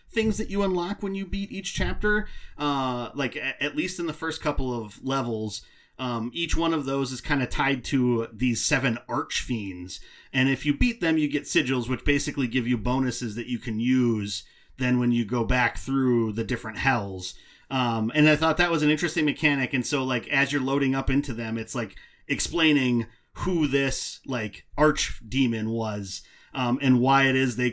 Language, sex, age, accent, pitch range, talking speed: English, male, 30-49, American, 115-140 Hz, 200 wpm